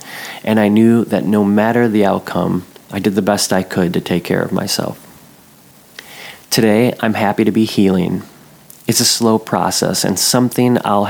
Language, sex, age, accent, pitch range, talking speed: English, male, 30-49, American, 95-115 Hz, 175 wpm